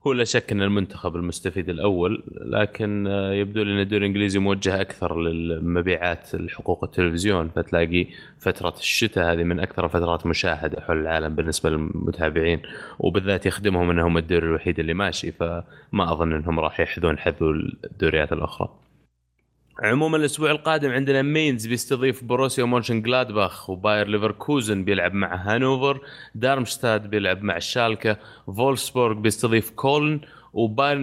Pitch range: 90-115 Hz